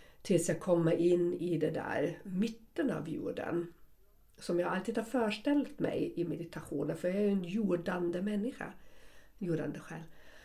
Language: Swedish